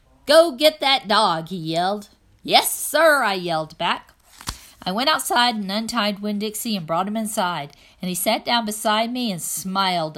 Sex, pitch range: female, 175-235 Hz